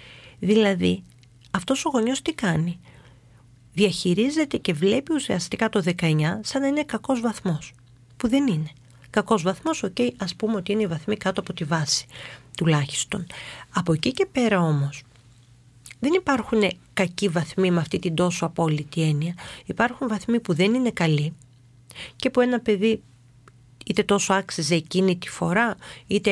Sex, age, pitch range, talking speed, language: female, 40-59, 150-215 Hz, 150 wpm, Greek